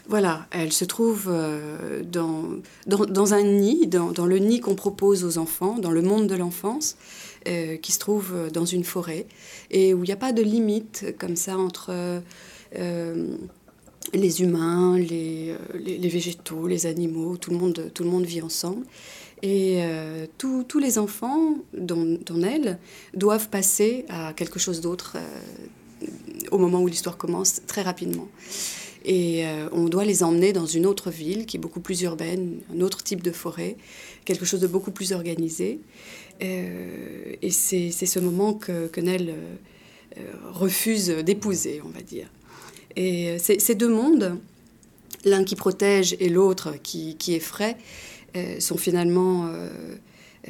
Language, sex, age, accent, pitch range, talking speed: French, female, 30-49, French, 170-195 Hz, 165 wpm